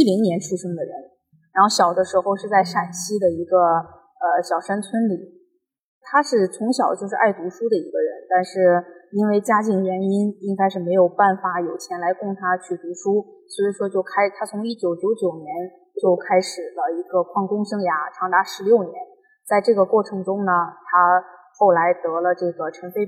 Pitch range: 180-255 Hz